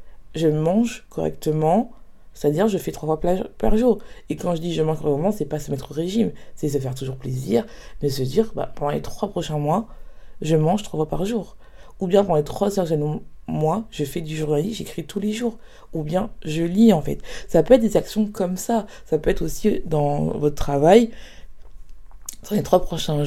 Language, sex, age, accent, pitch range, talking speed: French, female, 20-39, French, 150-210 Hz, 210 wpm